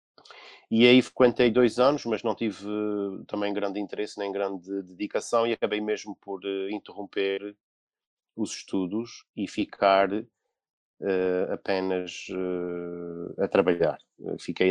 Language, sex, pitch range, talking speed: Portuguese, male, 95-115 Hz, 130 wpm